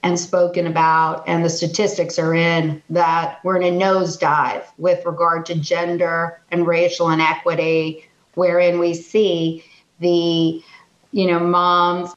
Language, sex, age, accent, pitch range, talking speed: English, female, 40-59, American, 170-190 Hz, 135 wpm